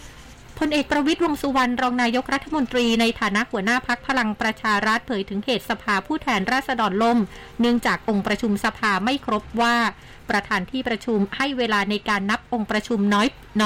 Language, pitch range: Thai, 205-245 Hz